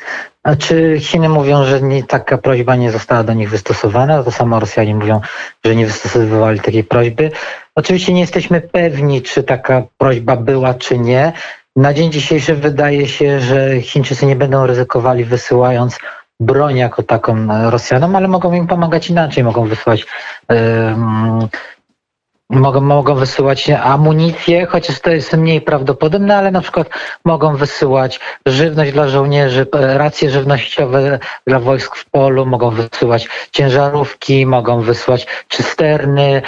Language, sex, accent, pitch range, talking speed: Polish, male, native, 125-165 Hz, 135 wpm